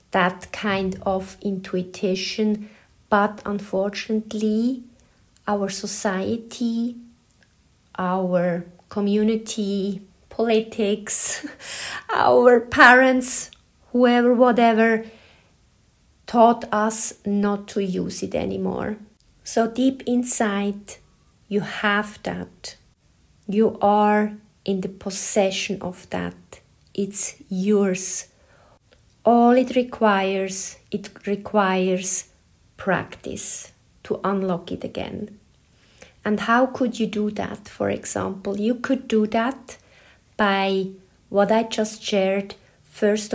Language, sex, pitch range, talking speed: English, female, 195-225 Hz, 90 wpm